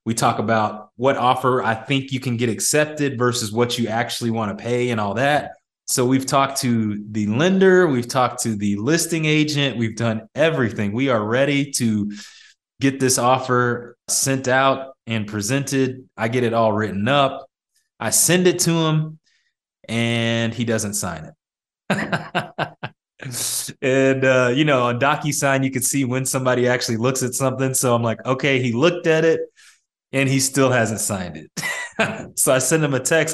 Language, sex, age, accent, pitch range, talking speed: English, male, 20-39, American, 115-140 Hz, 175 wpm